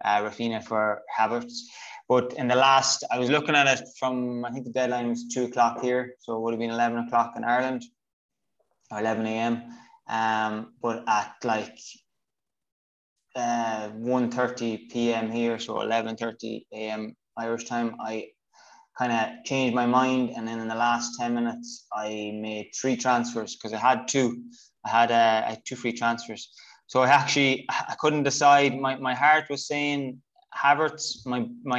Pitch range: 110-130 Hz